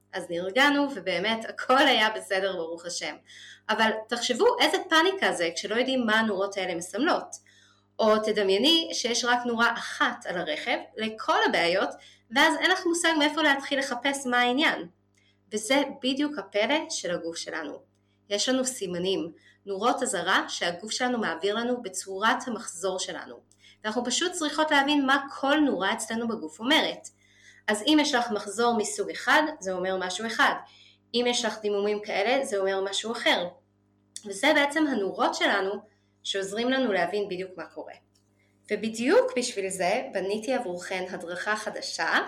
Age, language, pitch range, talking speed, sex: 20-39, Hebrew, 185-265 Hz, 145 wpm, female